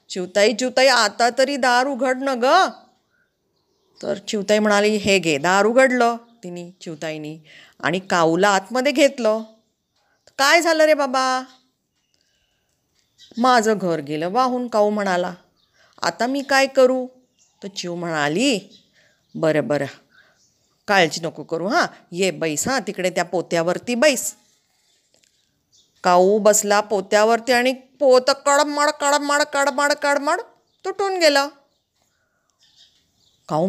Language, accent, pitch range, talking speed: Hindi, native, 190-285 Hz, 95 wpm